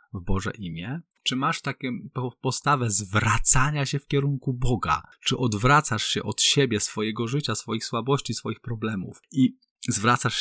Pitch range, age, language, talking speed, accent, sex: 95-125 Hz, 20-39, Polish, 145 wpm, native, male